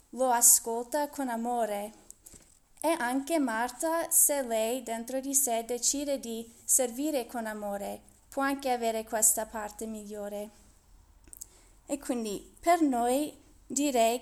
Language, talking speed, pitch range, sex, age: Italian, 120 wpm, 230-275 Hz, female, 20-39